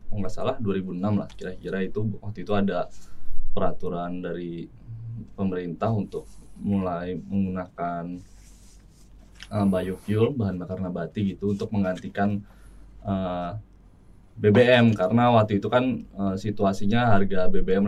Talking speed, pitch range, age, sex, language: 110 wpm, 95-115 Hz, 20-39, male, Indonesian